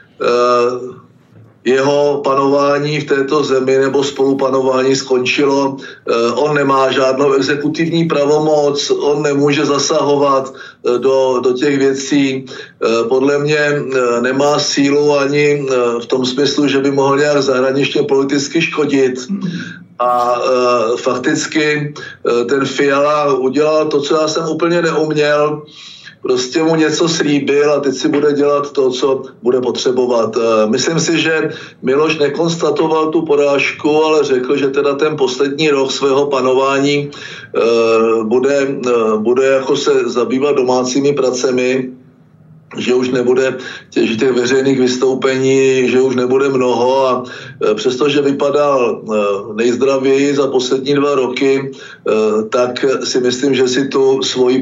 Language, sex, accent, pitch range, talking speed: Czech, male, native, 130-145 Hz, 120 wpm